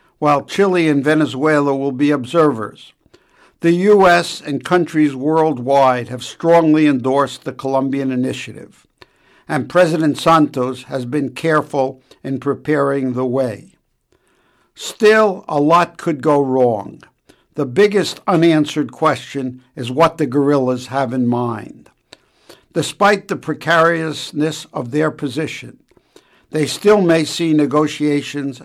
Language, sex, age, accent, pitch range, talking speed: English, male, 60-79, American, 135-165 Hz, 115 wpm